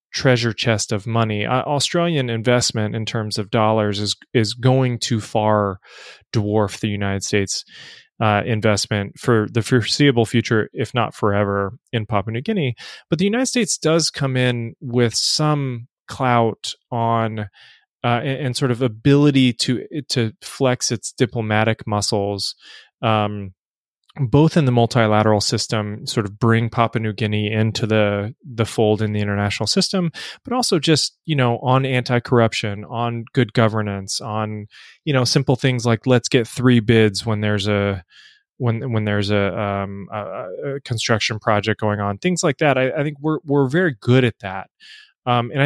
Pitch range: 105-130 Hz